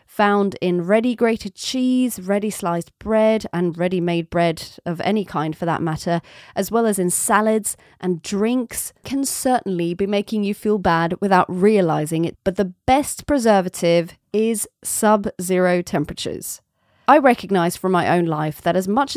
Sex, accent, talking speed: female, British, 150 wpm